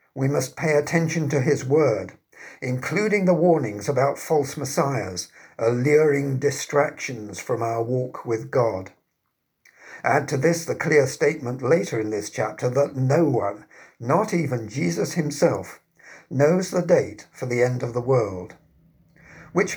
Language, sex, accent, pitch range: English, male, British, 125-160 Hz